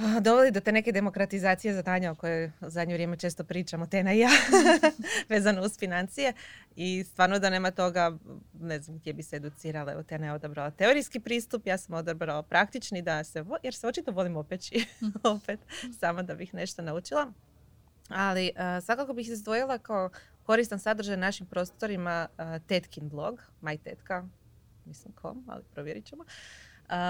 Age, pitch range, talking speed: 20-39, 160-210 Hz, 165 wpm